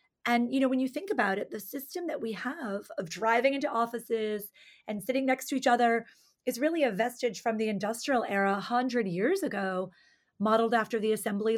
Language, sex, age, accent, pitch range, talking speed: English, female, 30-49, American, 210-250 Hz, 200 wpm